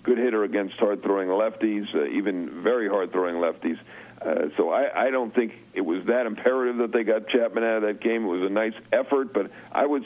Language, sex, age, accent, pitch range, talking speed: English, male, 50-69, American, 100-120 Hz, 215 wpm